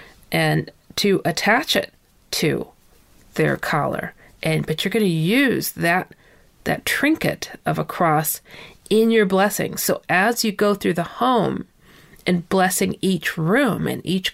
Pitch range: 165-210 Hz